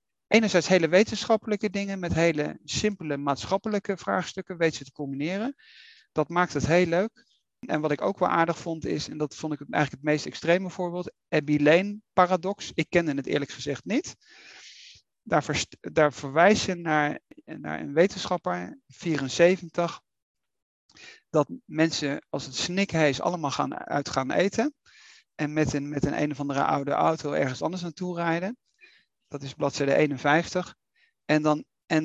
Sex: male